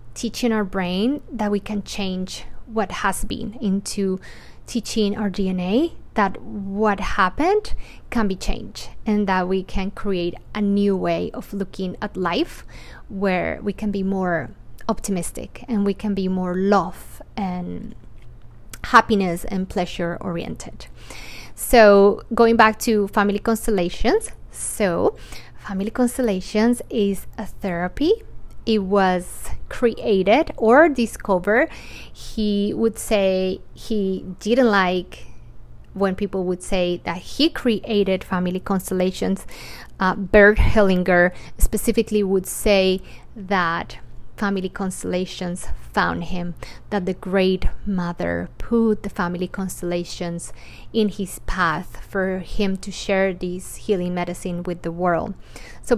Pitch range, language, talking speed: 185-215 Hz, English, 120 wpm